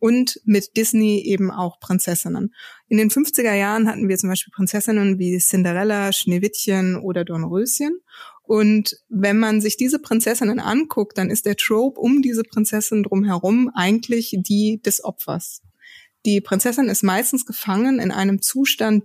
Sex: female